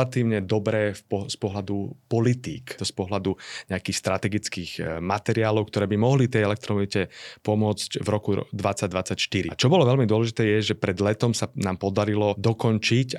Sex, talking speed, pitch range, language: male, 155 wpm, 95-115 Hz, Slovak